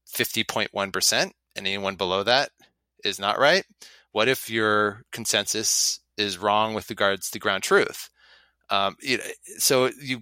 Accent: American